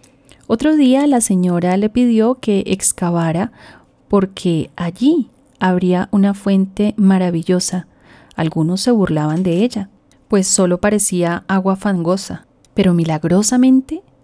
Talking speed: 110 wpm